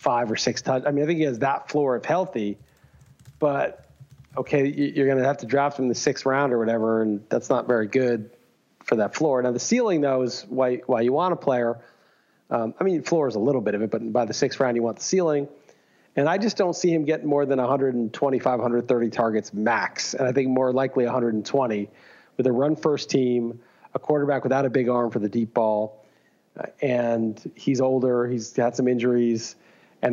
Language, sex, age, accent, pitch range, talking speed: English, male, 40-59, American, 120-140 Hz, 220 wpm